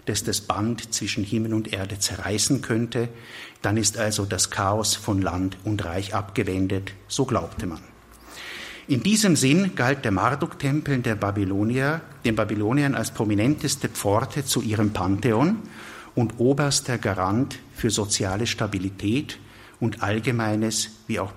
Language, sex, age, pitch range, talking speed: German, male, 50-69, 100-130 Hz, 135 wpm